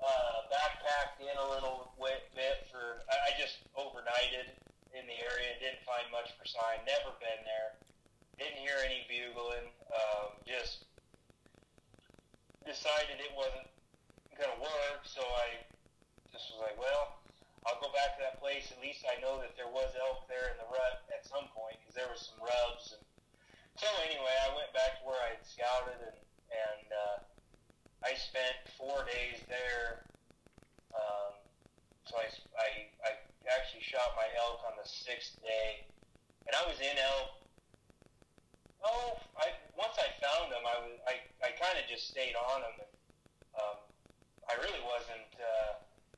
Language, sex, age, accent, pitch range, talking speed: English, male, 30-49, American, 115-135 Hz, 160 wpm